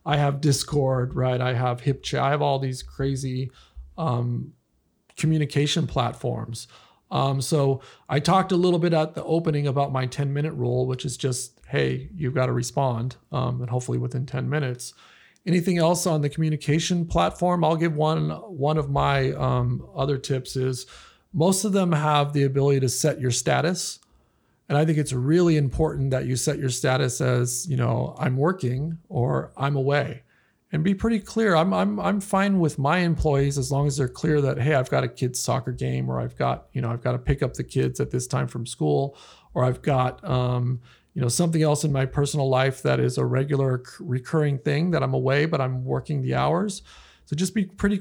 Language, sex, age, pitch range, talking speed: English, male, 40-59, 125-155 Hz, 200 wpm